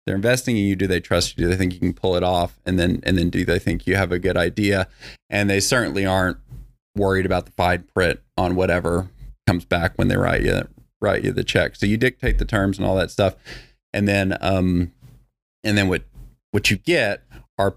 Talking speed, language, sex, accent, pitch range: 230 wpm, English, male, American, 95-115 Hz